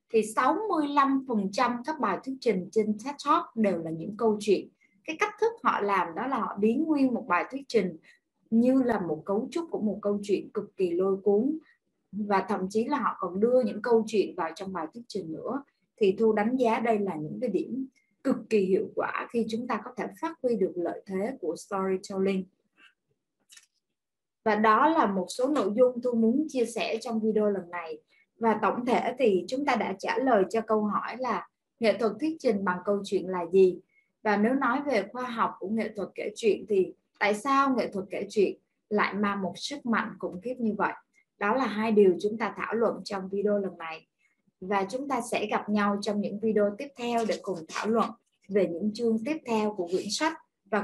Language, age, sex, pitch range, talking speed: Vietnamese, 20-39, female, 195-255 Hz, 215 wpm